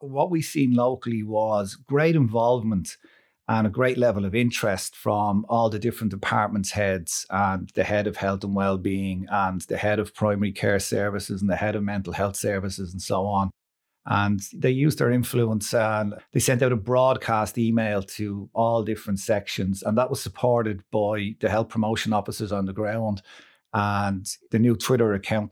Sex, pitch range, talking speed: male, 100-120 Hz, 180 wpm